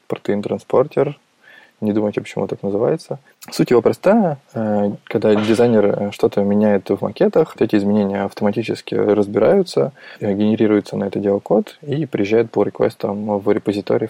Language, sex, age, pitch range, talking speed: Russian, male, 20-39, 100-110 Hz, 130 wpm